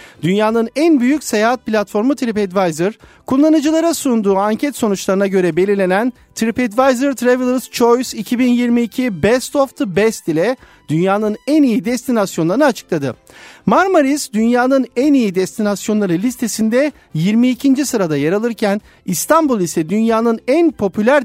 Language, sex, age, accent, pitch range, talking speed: Turkish, male, 50-69, native, 180-260 Hz, 115 wpm